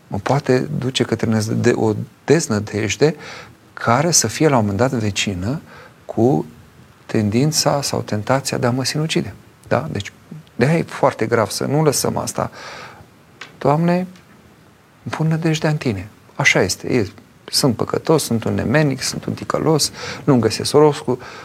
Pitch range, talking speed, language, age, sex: 110-140 Hz, 145 wpm, Romanian, 40-59, male